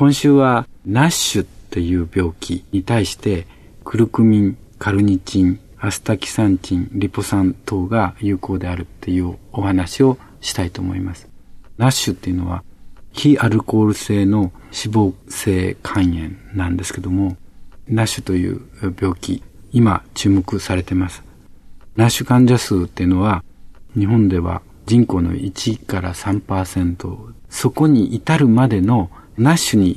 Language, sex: Japanese, male